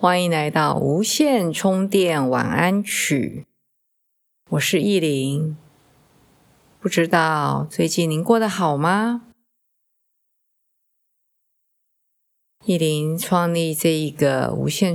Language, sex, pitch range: Chinese, female, 145-190 Hz